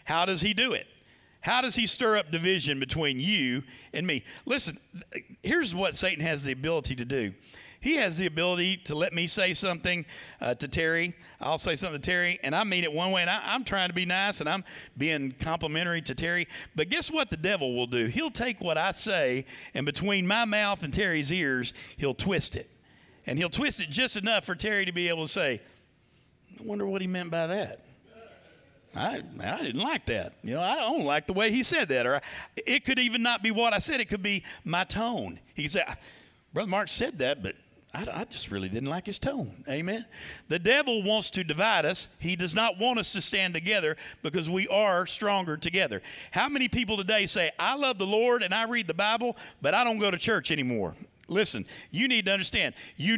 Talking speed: 215 wpm